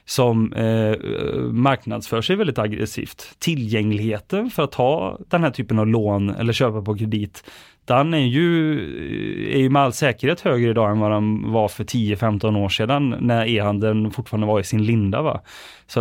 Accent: Swedish